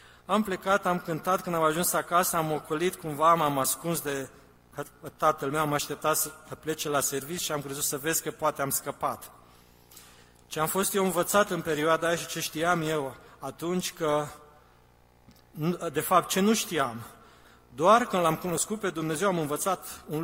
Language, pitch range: Romanian, 130-165 Hz